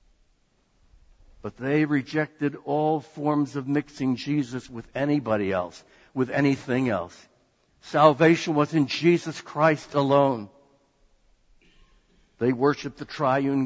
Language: English